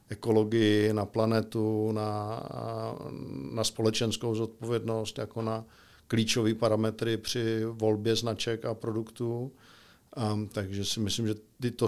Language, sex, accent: Czech, male, native